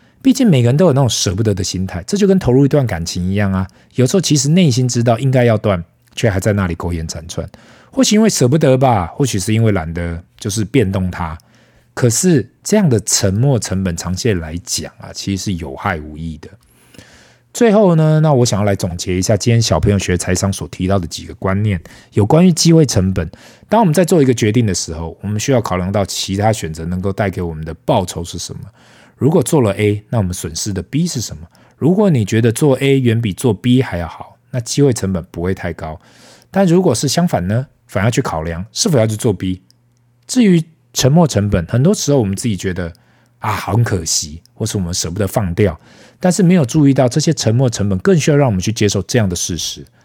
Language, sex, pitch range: Chinese, male, 95-135 Hz